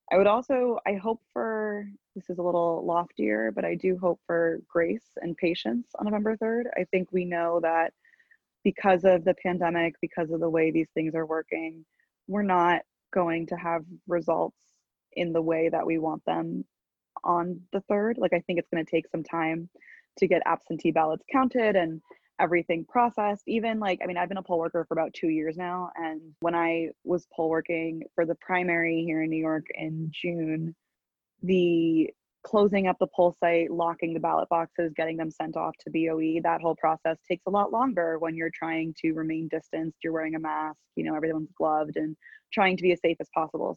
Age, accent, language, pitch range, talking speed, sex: 20-39, American, English, 160-185 Hz, 200 wpm, female